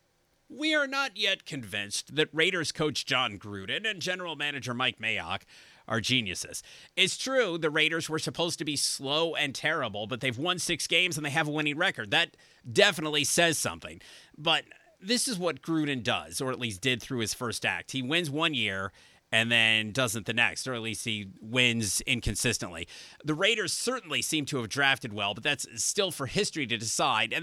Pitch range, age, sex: 120-165 Hz, 30-49, male